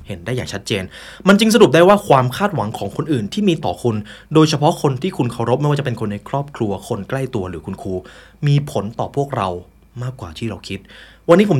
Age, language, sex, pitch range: 20-39, Thai, male, 100-145 Hz